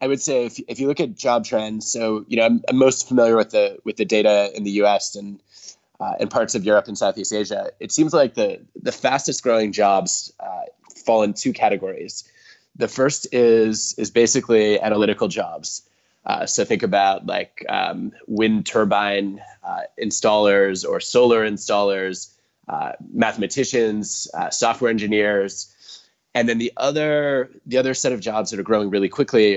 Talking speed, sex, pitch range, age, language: 175 wpm, male, 100-120 Hz, 20-39, Finnish